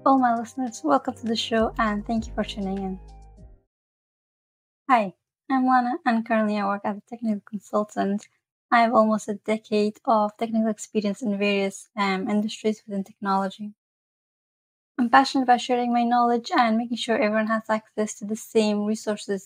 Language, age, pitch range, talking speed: English, 20-39, 200-230 Hz, 165 wpm